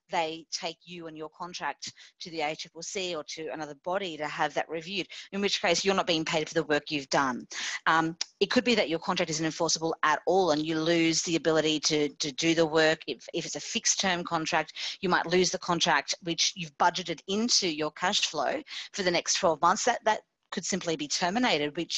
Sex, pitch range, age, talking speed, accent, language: female, 160-205 Hz, 40-59, 220 wpm, Australian, English